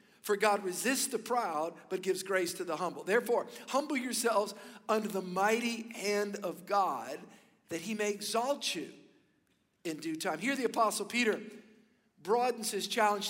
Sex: male